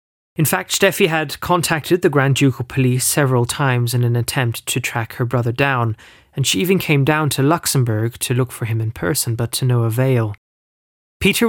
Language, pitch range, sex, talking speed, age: English, 120-155 Hz, male, 195 wpm, 20-39